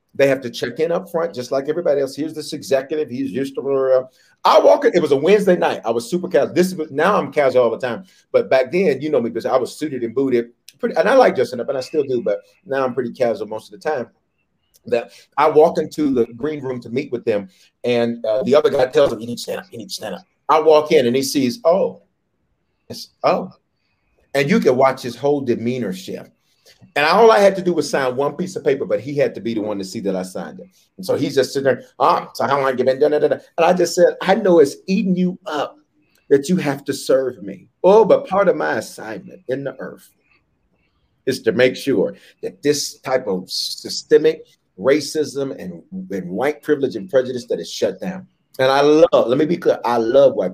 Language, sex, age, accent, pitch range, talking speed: English, male, 40-59, American, 130-185 Hz, 245 wpm